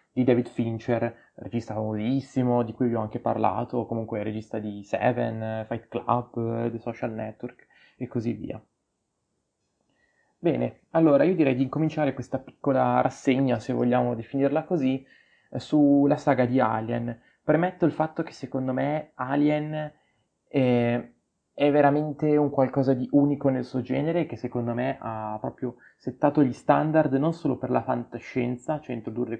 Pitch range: 120-140 Hz